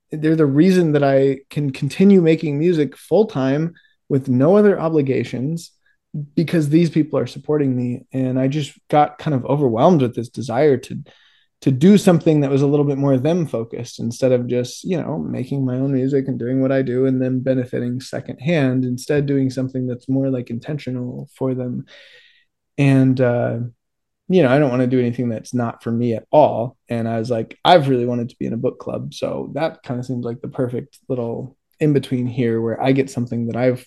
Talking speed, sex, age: 205 wpm, male, 20-39